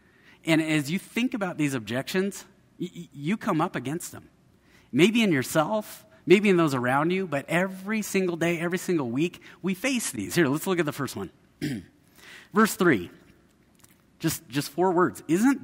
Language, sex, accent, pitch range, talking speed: English, male, American, 135-195 Hz, 170 wpm